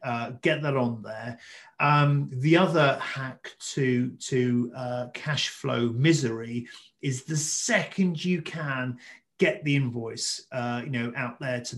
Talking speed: 150 wpm